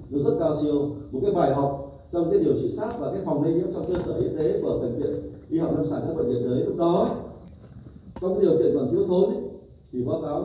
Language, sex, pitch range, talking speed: Vietnamese, male, 130-180 Hz, 270 wpm